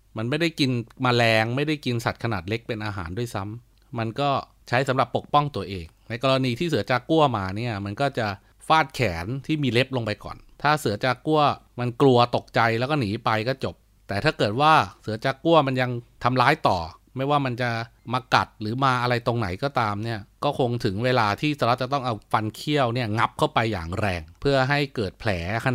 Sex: male